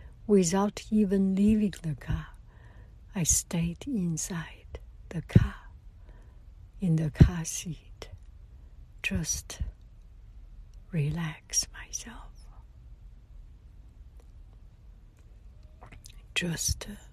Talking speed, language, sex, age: 65 wpm, English, female, 60-79